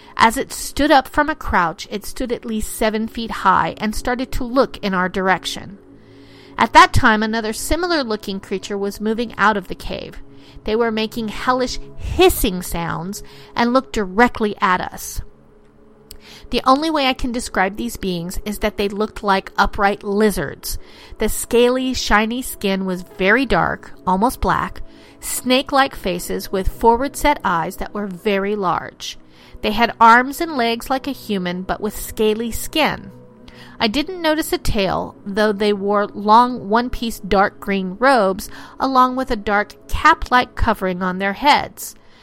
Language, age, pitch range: English, 40-59, 195-255 Hz